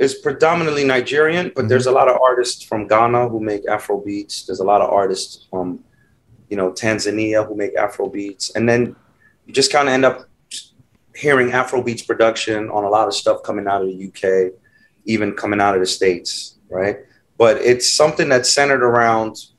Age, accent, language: 30-49, American, English